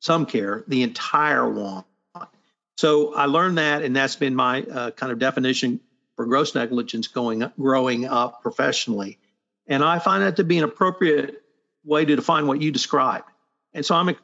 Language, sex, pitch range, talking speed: English, male, 130-170 Hz, 175 wpm